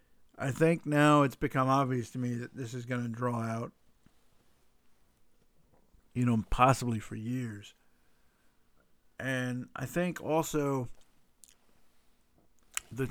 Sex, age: male, 50-69